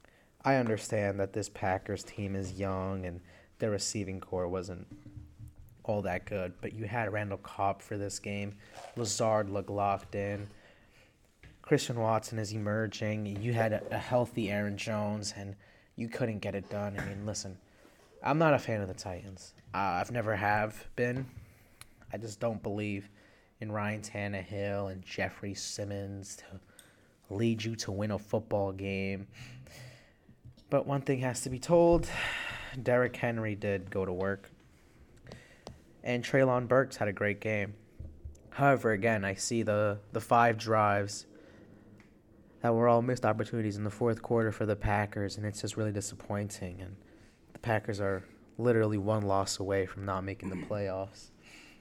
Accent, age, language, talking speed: American, 20-39, English, 160 wpm